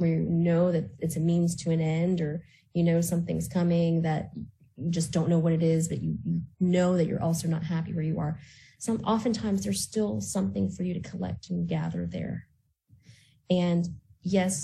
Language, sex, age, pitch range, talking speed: English, female, 20-39, 155-175 Hz, 195 wpm